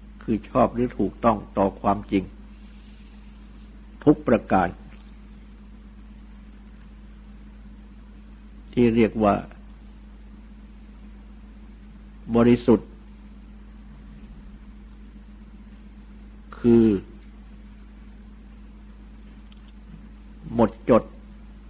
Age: 60-79